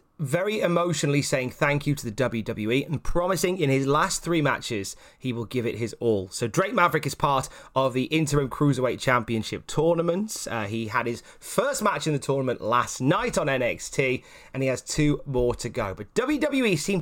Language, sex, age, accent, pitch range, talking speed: English, male, 30-49, British, 125-175 Hz, 195 wpm